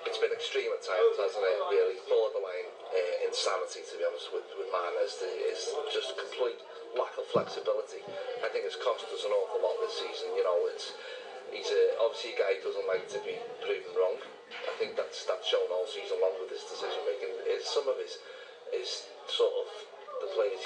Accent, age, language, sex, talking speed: British, 30-49, English, male, 205 wpm